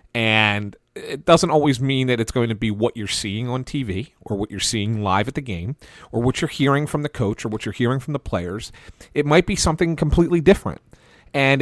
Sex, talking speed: male, 225 wpm